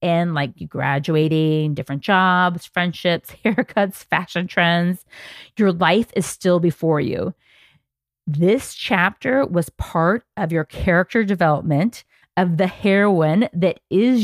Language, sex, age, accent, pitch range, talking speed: English, female, 40-59, American, 160-210 Hz, 120 wpm